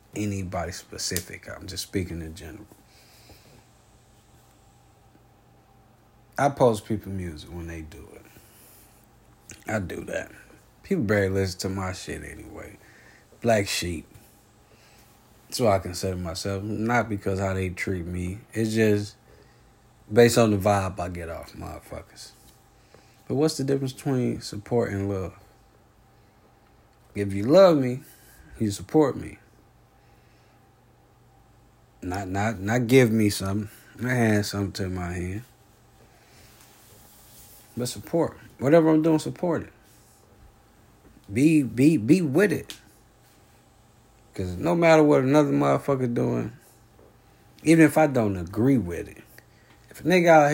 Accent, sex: American, male